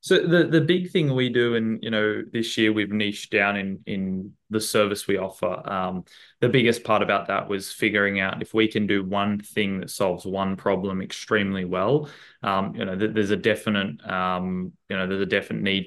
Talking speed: 210 wpm